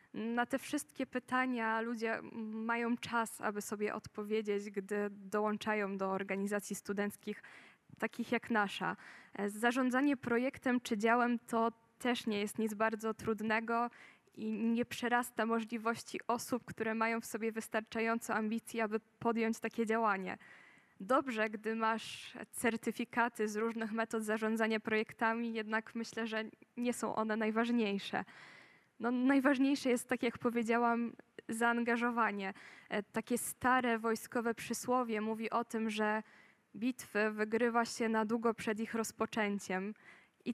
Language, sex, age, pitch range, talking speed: Polish, female, 10-29, 215-235 Hz, 125 wpm